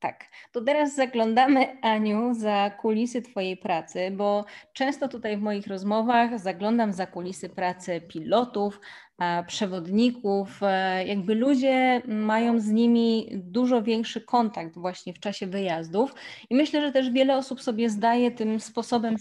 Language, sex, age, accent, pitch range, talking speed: Polish, female, 20-39, native, 185-230 Hz, 135 wpm